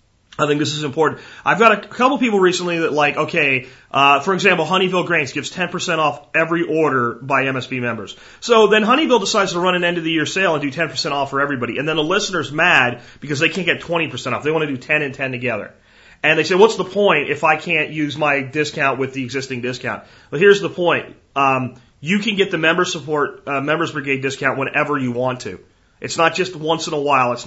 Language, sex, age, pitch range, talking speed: English, male, 30-49, 135-180 Hz, 225 wpm